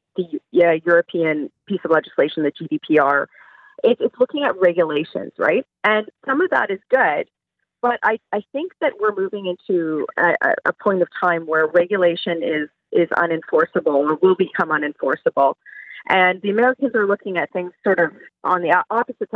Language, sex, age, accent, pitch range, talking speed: English, female, 30-49, American, 170-265 Hz, 165 wpm